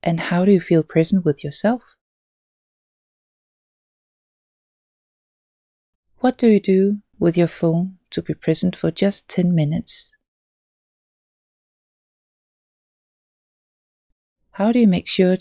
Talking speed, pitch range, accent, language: 105 wpm, 155-200 Hz, Danish, English